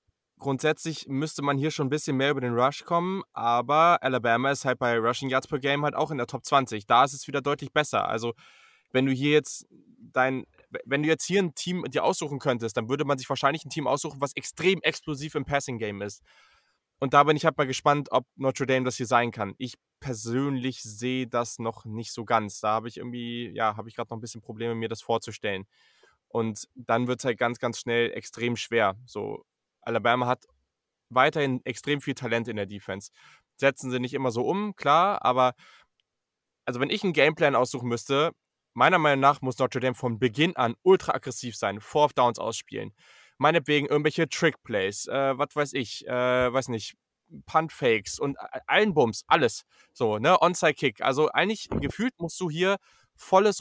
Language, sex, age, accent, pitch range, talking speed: German, male, 20-39, German, 120-150 Hz, 195 wpm